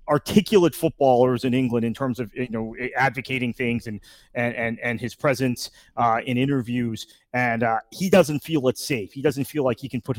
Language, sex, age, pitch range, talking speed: English, male, 30-49, 120-150 Hz, 200 wpm